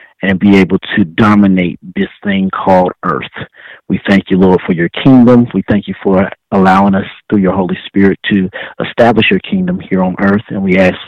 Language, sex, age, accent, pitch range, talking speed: English, male, 30-49, American, 95-115 Hz, 195 wpm